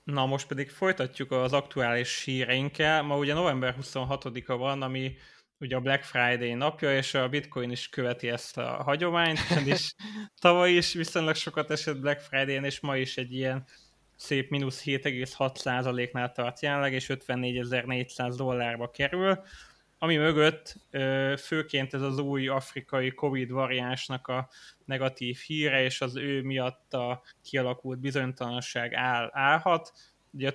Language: Hungarian